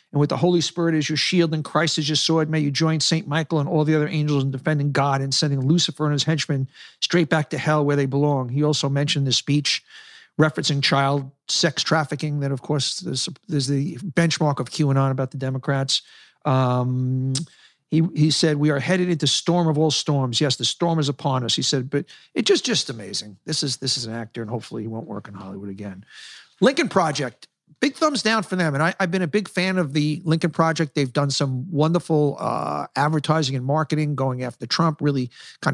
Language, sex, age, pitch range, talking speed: English, male, 50-69, 130-160 Hz, 220 wpm